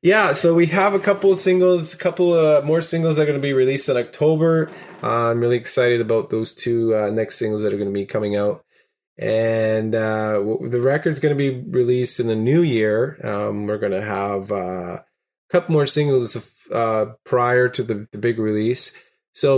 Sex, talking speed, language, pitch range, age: male, 205 wpm, English, 110-140 Hz, 20-39